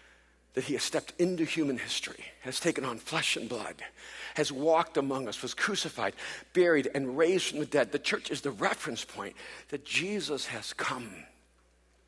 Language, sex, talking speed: English, male, 175 wpm